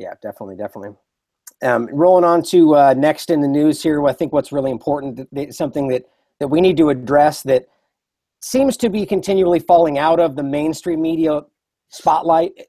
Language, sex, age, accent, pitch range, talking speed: English, male, 40-59, American, 145-175 Hz, 175 wpm